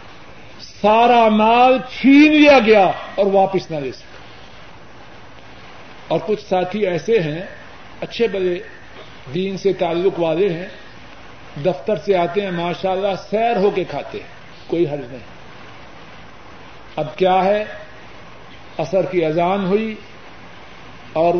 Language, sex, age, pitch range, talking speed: Urdu, male, 50-69, 165-210 Hz, 120 wpm